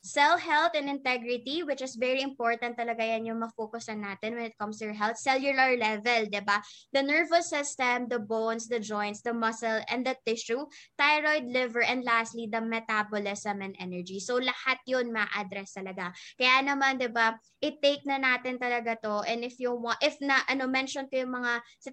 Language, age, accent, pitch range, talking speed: English, 20-39, Filipino, 225-275 Hz, 190 wpm